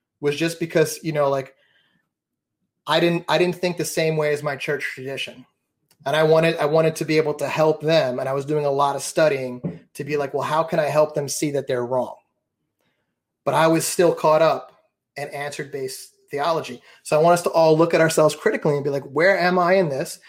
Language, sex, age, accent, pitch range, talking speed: English, male, 30-49, American, 145-175 Hz, 230 wpm